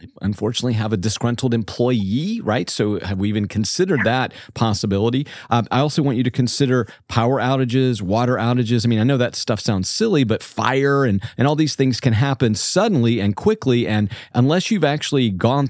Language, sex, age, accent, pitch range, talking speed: English, male, 40-59, American, 105-125 Hz, 185 wpm